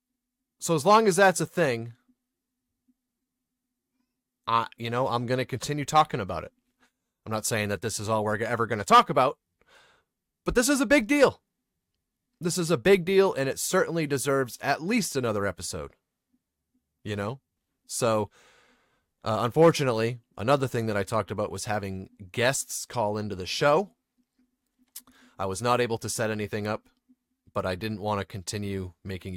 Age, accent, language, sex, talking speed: 30-49, American, English, male, 170 wpm